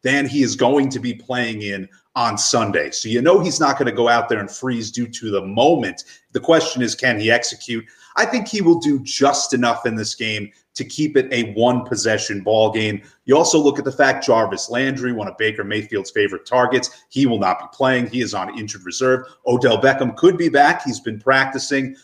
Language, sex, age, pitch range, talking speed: English, male, 30-49, 110-135 Hz, 225 wpm